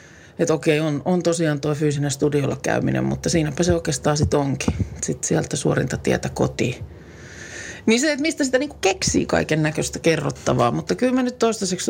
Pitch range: 140-180 Hz